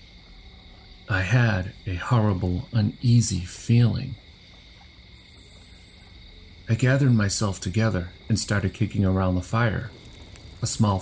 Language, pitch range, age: English, 90-110 Hz, 40-59